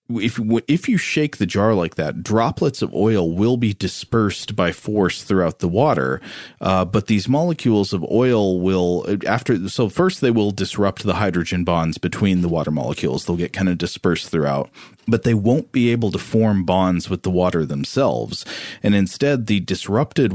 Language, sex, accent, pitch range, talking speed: English, male, American, 90-110 Hz, 180 wpm